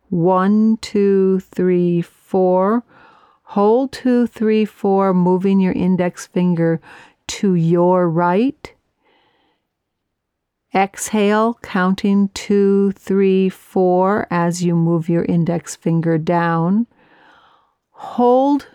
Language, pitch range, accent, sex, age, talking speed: English, 175-220 Hz, American, female, 50-69, 90 wpm